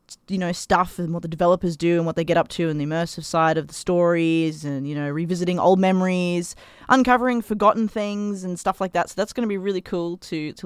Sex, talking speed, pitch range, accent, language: female, 240 wpm, 165-205 Hz, Australian, English